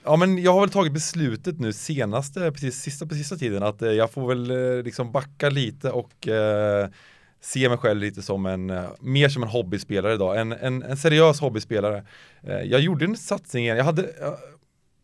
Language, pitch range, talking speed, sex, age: Swedish, 105-145 Hz, 190 wpm, male, 20-39